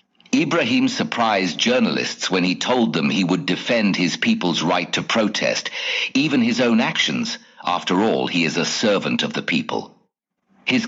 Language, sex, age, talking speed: English, male, 60-79, 160 wpm